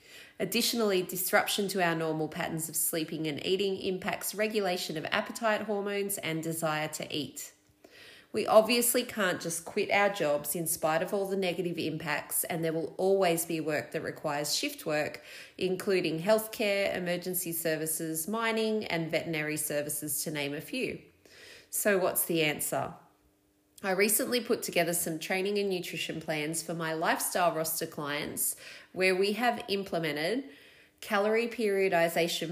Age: 30-49